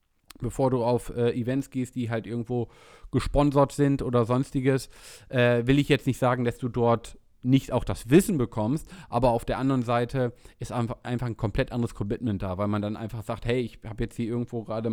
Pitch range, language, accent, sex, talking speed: 115-135 Hz, German, German, male, 210 wpm